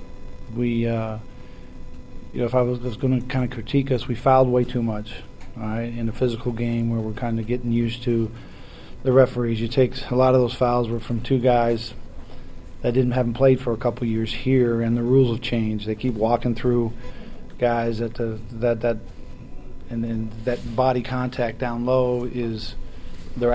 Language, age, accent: English, 40-59, American